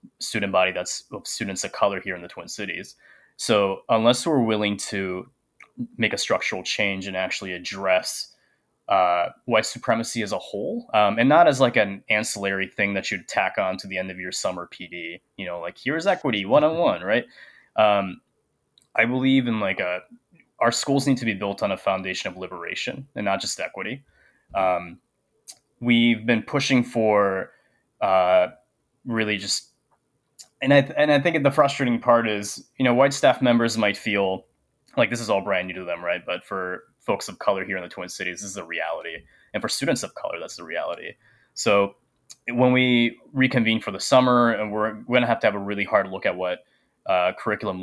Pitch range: 95-120 Hz